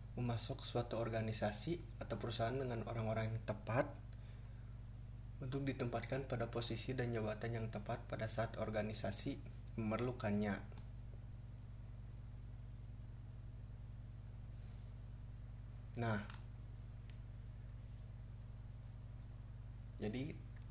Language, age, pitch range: Indonesian, 20-39, 110-115 Hz